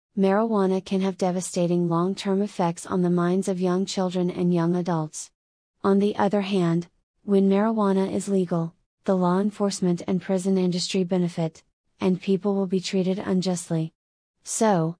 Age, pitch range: 30-49, 175-200 Hz